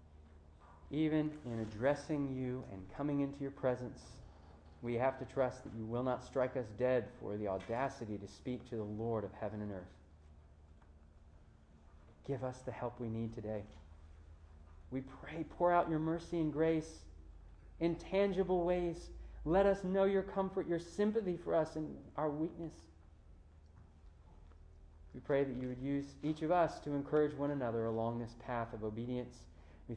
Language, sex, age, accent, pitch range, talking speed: English, male, 30-49, American, 75-130 Hz, 160 wpm